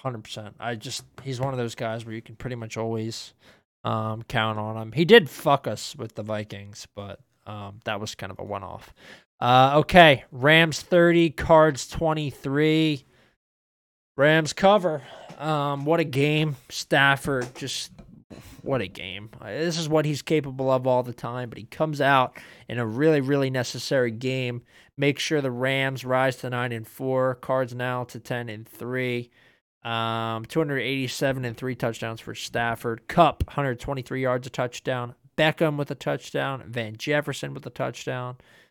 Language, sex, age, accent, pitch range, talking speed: English, male, 20-39, American, 115-145 Hz, 165 wpm